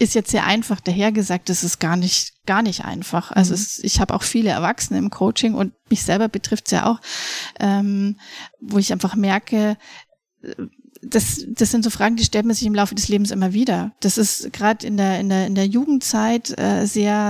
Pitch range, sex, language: 195-220 Hz, female, German